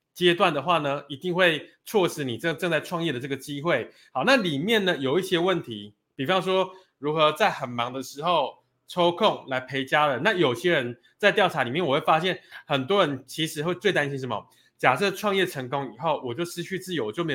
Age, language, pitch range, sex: 20-39, Chinese, 135-180 Hz, male